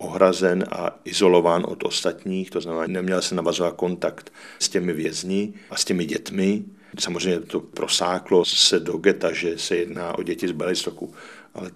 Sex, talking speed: male, 165 wpm